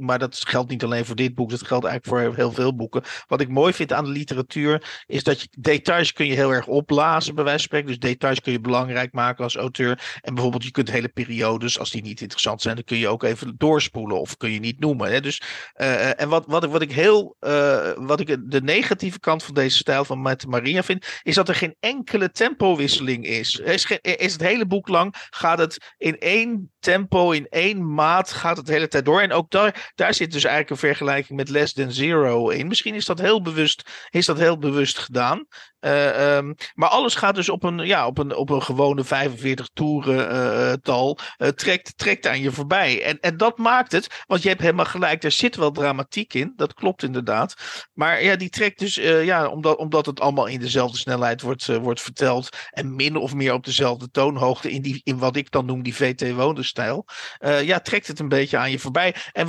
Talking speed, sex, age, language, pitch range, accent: 225 wpm, male, 50-69, Dutch, 130-165 Hz, Dutch